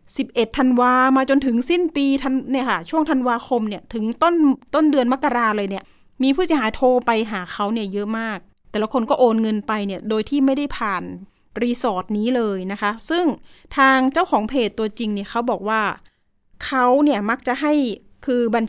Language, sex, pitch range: Thai, female, 215-270 Hz